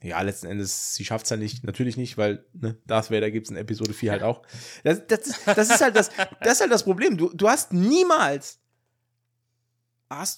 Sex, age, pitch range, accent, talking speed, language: male, 20-39, 115-160 Hz, German, 185 wpm, German